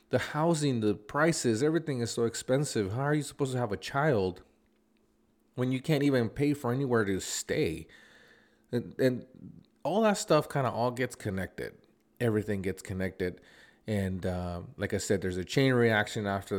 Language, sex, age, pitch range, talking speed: English, male, 30-49, 95-120 Hz, 175 wpm